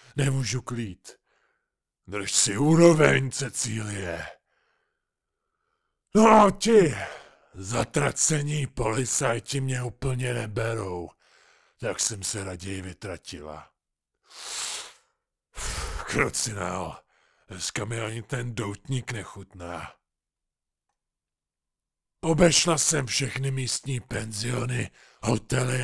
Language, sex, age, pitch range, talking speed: Czech, male, 50-69, 110-145 Hz, 75 wpm